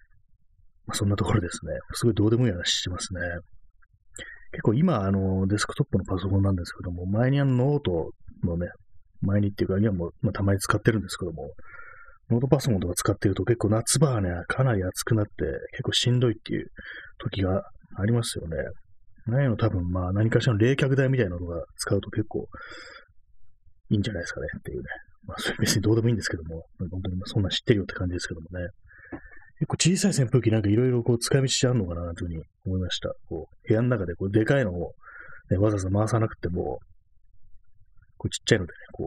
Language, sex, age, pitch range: Japanese, male, 30-49, 90-115 Hz